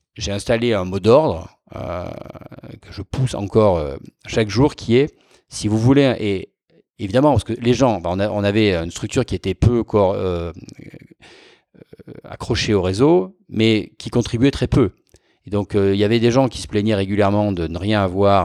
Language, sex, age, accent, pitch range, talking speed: French, male, 40-59, French, 95-125 Hz, 200 wpm